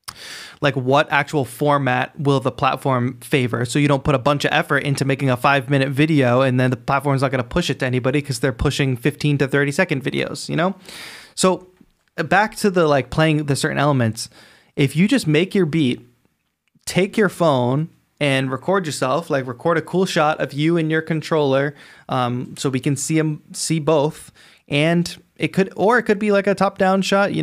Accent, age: American, 20-39